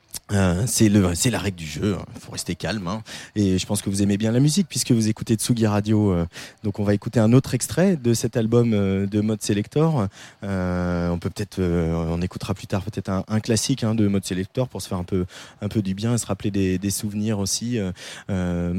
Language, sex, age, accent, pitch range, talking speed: French, male, 20-39, French, 100-130 Hz, 245 wpm